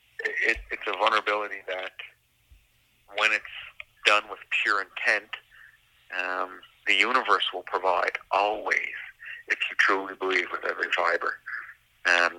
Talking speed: 115 wpm